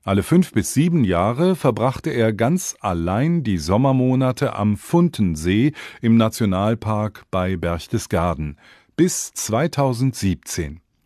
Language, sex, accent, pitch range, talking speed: English, male, German, 90-135 Hz, 105 wpm